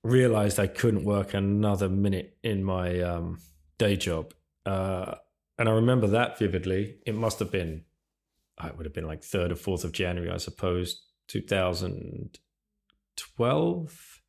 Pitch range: 85-110 Hz